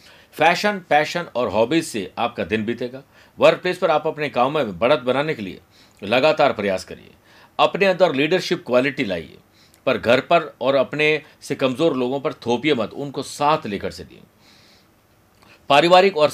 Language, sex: Hindi, male